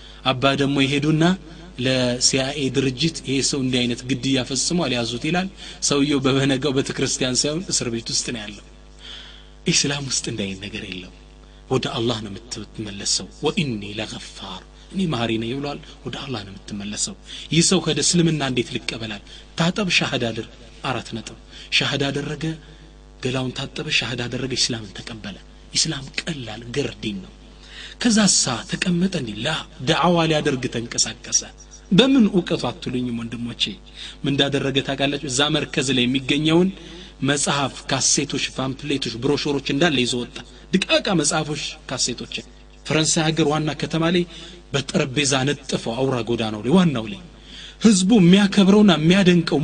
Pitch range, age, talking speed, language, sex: 125-170 Hz, 30-49, 105 wpm, Amharic, male